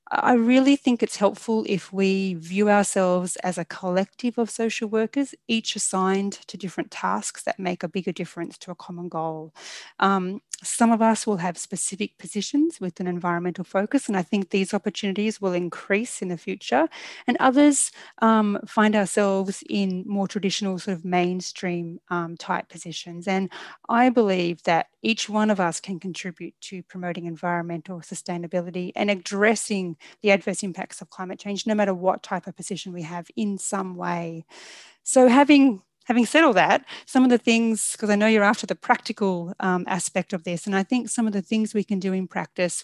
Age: 30-49